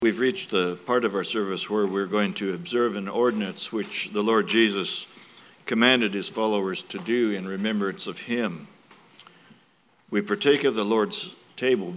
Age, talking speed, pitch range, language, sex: 60-79, 165 wpm, 100-115 Hz, English, male